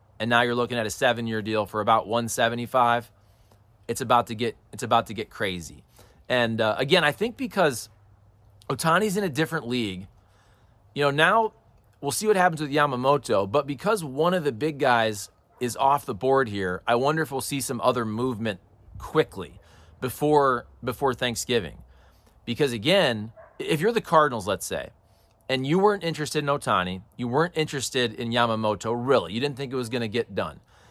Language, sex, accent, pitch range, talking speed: English, male, American, 105-145 Hz, 180 wpm